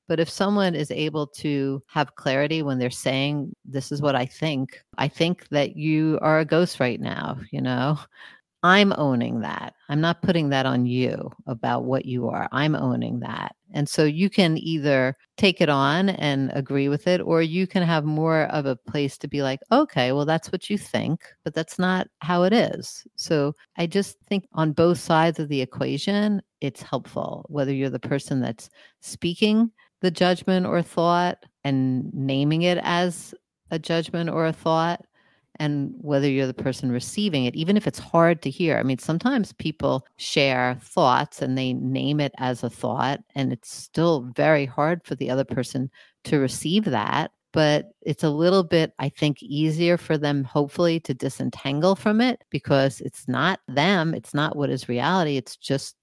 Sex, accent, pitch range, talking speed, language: female, American, 135-175 Hz, 185 wpm, English